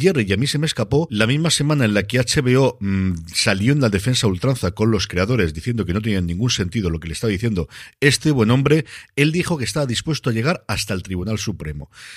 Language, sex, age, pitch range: Spanish, male, 50-69, 100-130 Hz